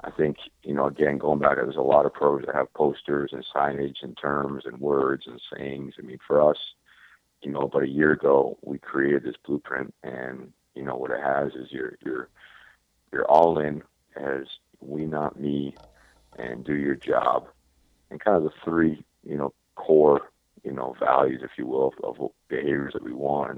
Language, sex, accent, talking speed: English, male, American, 200 wpm